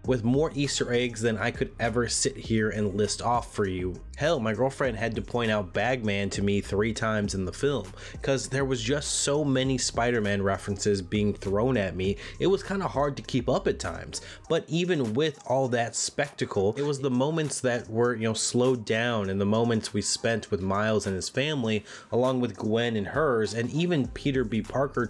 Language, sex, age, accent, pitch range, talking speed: English, male, 20-39, American, 105-135 Hz, 210 wpm